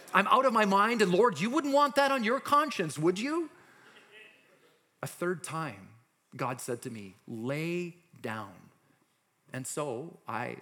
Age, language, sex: 40-59, English, male